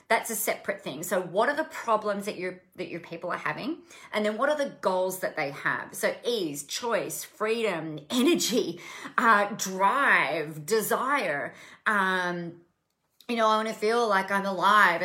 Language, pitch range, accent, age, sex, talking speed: English, 180-230 Hz, Australian, 30-49, female, 170 wpm